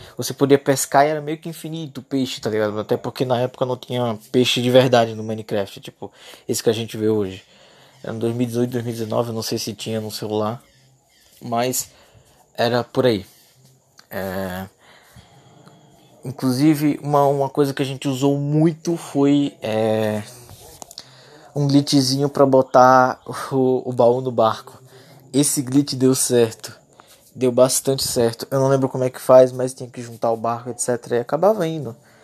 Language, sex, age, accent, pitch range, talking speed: Portuguese, male, 20-39, Brazilian, 125-160 Hz, 160 wpm